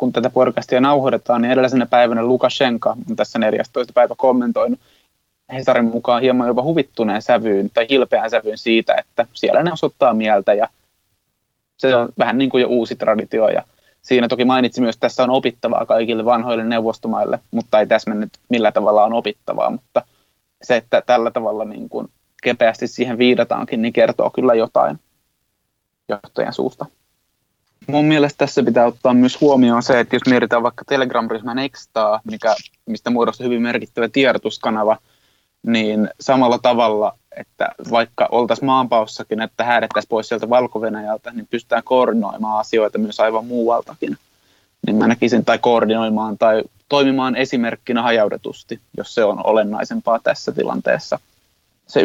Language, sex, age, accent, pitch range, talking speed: Finnish, male, 20-39, native, 110-130 Hz, 145 wpm